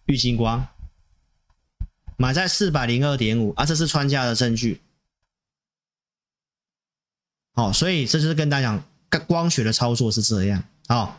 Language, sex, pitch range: Chinese, male, 115-160 Hz